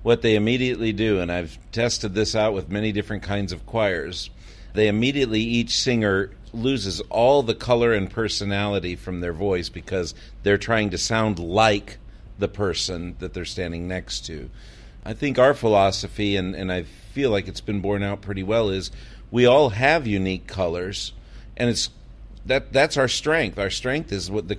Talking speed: 180 wpm